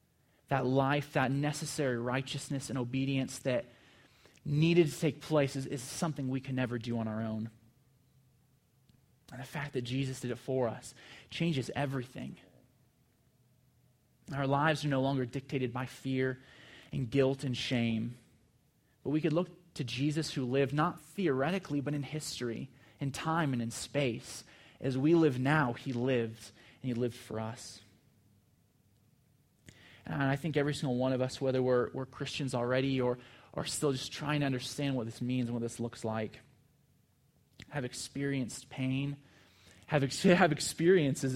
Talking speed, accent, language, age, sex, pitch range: 160 wpm, American, English, 20-39, male, 125-140 Hz